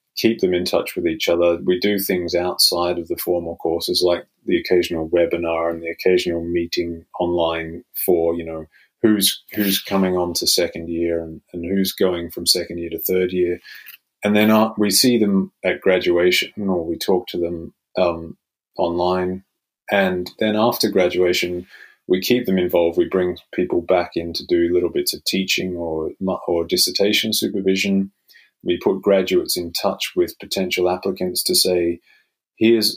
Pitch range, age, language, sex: 85-100 Hz, 30-49, English, male